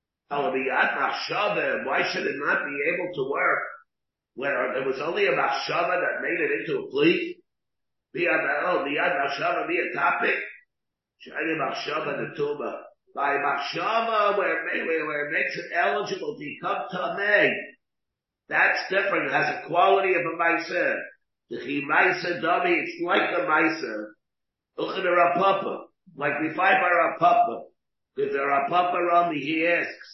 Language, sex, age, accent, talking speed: English, male, 50-69, American, 155 wpm